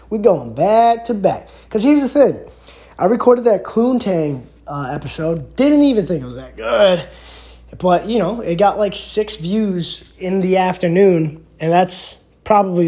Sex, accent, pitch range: male, American, 150-215 Hz